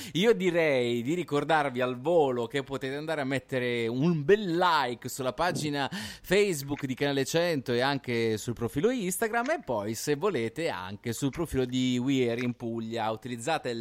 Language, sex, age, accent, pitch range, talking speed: Italian, male, 30-49, native, 115-145 Hz, 165 wpm